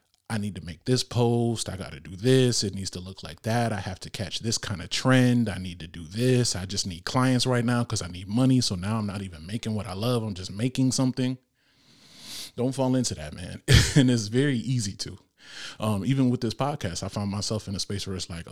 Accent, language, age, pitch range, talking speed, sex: American, English, 30-49, 100-125 Hz, 250 wpm, male